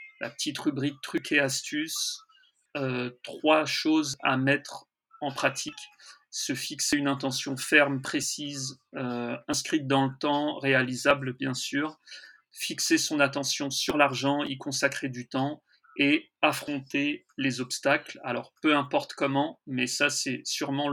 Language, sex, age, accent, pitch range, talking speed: French, male, 40-59, French, 130-150 Hz, 145 wpm